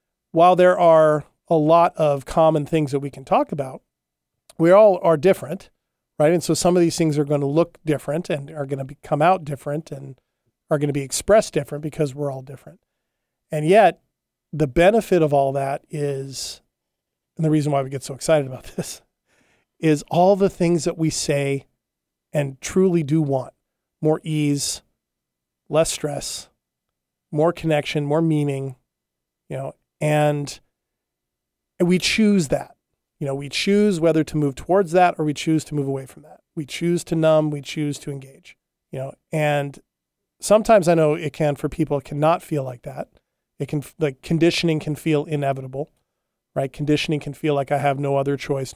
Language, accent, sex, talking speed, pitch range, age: English, American, male, 180 wpm, 140-165 Hz, 40-59